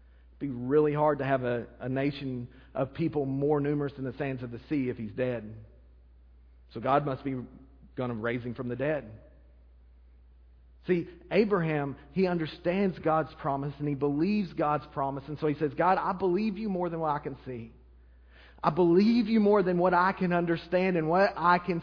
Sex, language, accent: male, English, American